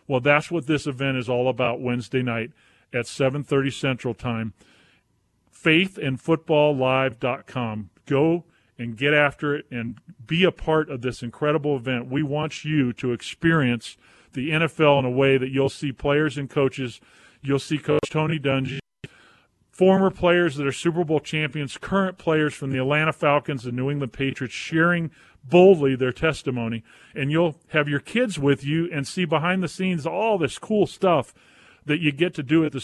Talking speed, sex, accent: 170 wpm, male, American